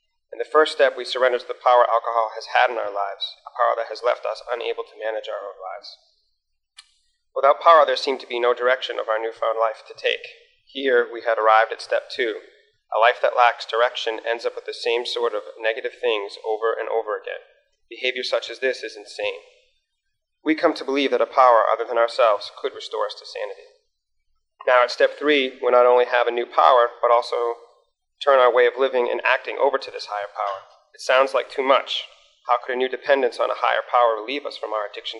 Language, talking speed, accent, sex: English, 225 wpm, American, male